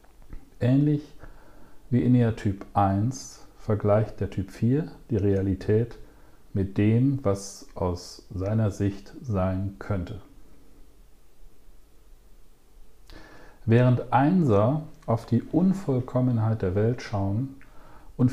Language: German